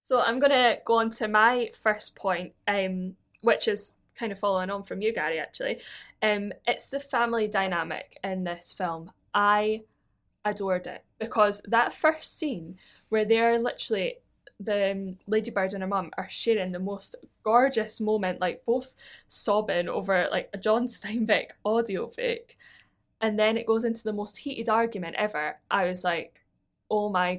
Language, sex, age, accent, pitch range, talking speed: English, female, 10-29, British, 190-235 Hz, 165 wpm